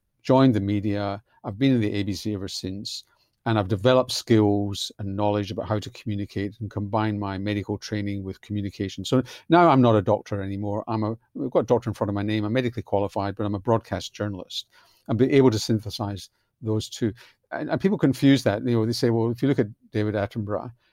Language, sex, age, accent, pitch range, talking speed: English, male, 50-69, British, 105-125 Hz, 215 wpm